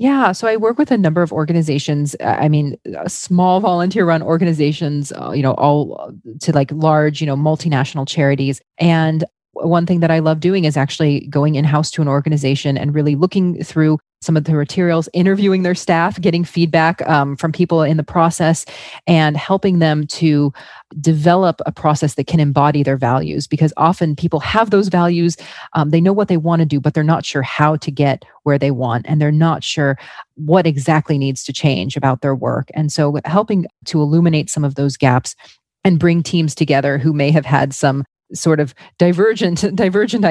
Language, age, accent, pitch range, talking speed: English, 30-49, American, 145-175 Hz, 190 wpm